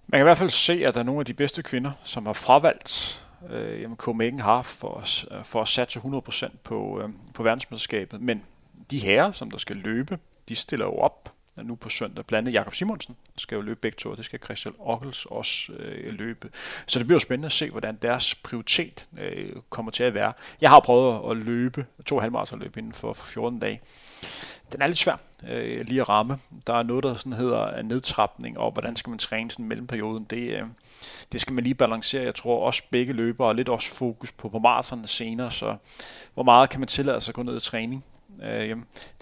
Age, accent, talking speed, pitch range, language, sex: 30-49, native, 215 wpm, 115-135 Hz, Danish, male